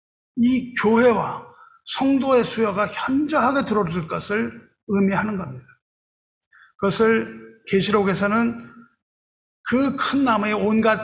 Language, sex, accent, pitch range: Korean, male, native, 195-255 Hz